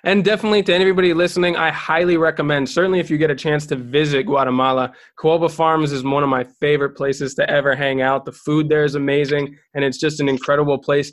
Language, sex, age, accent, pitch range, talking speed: English, male, 20-39, American, 135-155 Hz, 215 wpm